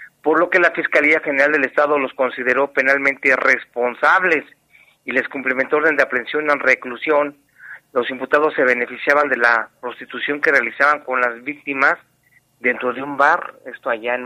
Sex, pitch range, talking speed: male, 130-155 Hz, 165 wpm